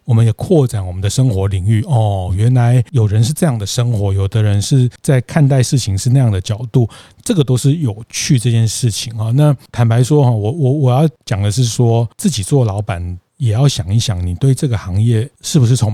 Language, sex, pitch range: Chinese, male, 105-130 Hz